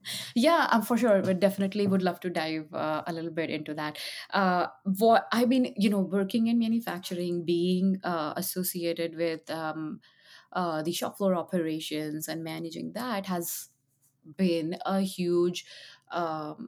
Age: 20-39